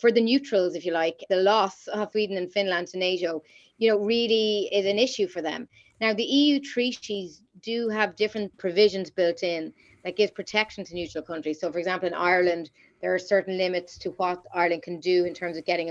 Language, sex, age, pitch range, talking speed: English, female, 30-49, 180-210 Hz, 210 wpm